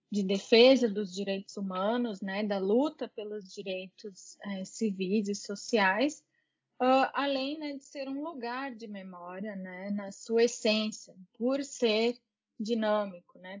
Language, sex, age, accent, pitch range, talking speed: Portuguese, female, 20-39, Brazilian, 195-245 Hz, 130 wpm